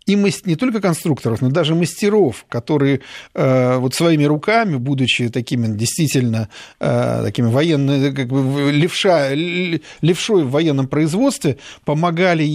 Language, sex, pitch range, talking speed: Russian, male, 140-175 Hz, 130 wpm